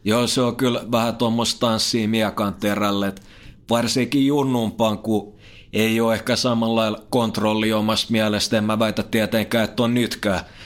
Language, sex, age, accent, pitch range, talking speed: Finnish, male, 30-49, native, 100-115 Hz, 140 wpm